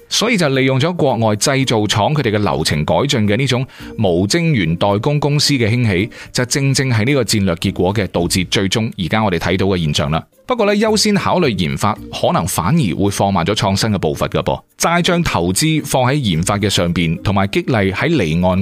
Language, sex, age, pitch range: Chinese, male, 30-49, 95-135 Hz